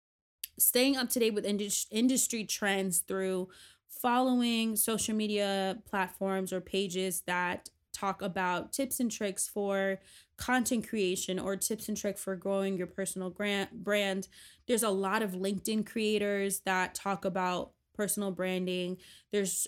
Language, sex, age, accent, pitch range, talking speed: English, female, 20-39, American, 190-220 Hz, 135 wpm